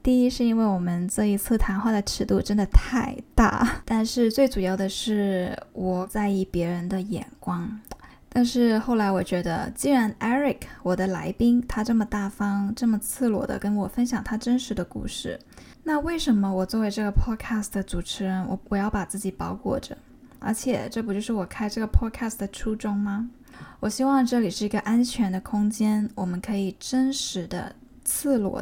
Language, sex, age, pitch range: Chinese, female, 10-29, 195-240 Hz